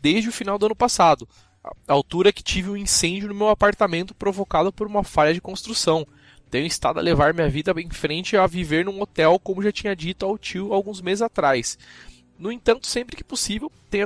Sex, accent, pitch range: male, Brazilian, 170-215 Hz